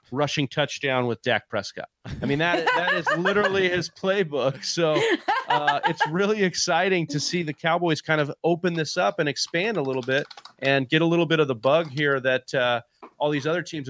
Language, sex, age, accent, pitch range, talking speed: English, male, 30-49, American, 135-160 Hz, 205 wpm